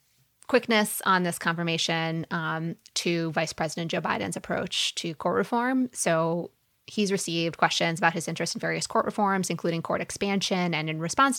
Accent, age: American, 20-39